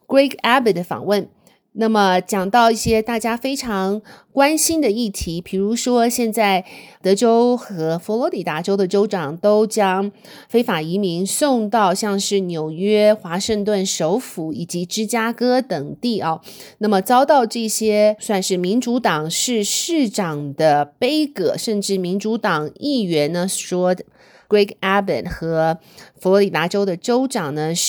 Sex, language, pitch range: female, Chinese, 175-230 Hz